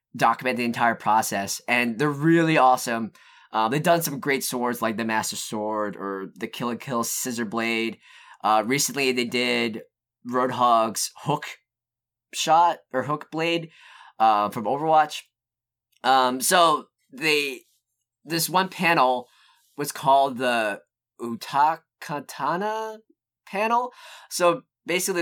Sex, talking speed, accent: male, 120 wpm, American